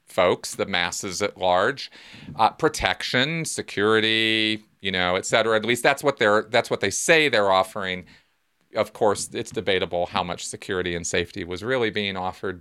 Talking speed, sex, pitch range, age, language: 165 wpm, male, 105-145 Hz, 40-59, English